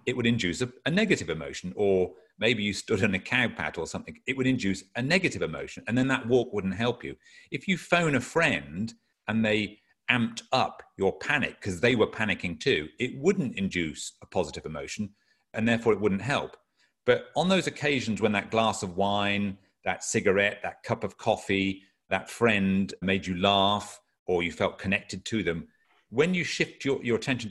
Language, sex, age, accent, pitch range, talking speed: English, male, 40-59, British, 100-125 Hz, 190 wpm